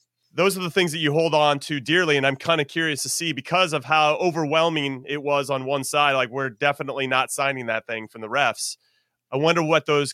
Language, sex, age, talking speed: English, male, 30-49, 235 wpm